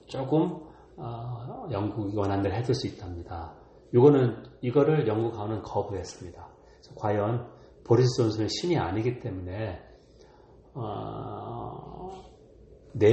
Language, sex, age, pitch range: Korean, male, 40-59, 105-130 Hz